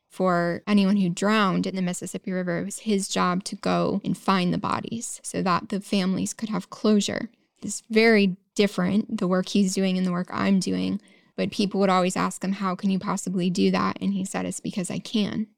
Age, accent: 10-29, American